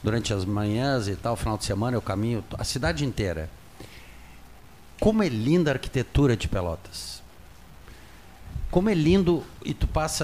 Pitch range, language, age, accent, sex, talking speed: 100-135 Hz, Portuguese, 60-79, Brazilian, male, 150 wpm